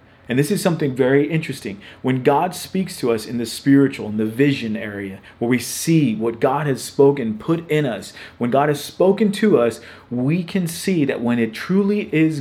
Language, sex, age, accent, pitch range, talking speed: English, male, 30-49, American, 120-155 Hz, 205 wpm